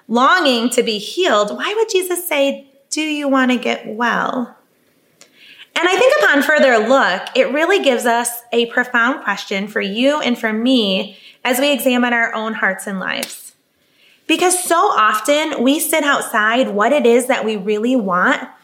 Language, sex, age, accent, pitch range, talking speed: English, female, 20-39, American, 225-280 Hz, 170 wpm